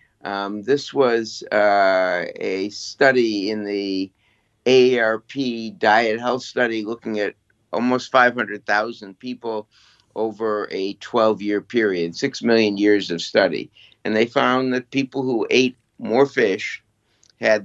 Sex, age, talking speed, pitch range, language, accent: male, 60-79, 120 wpm, 100-125 Hz, English, American